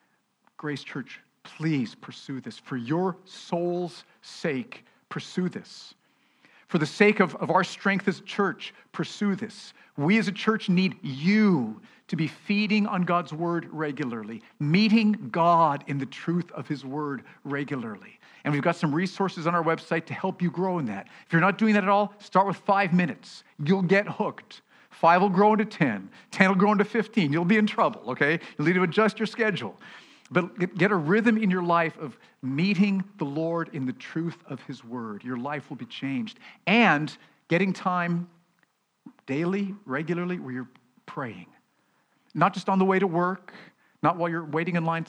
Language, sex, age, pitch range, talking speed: English, male, 50-69, 145-200 Hz, 180 wpm